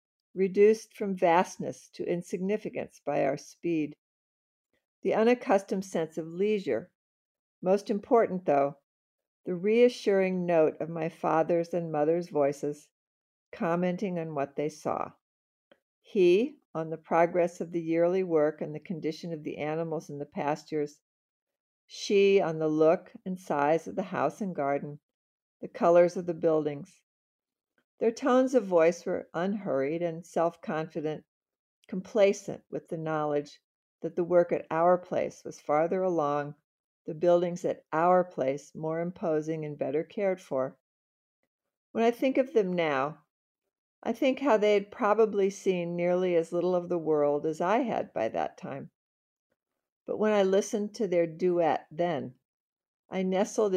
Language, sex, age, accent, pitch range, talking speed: English, female, 50-69, American, 155-195 Hz, 145 wpm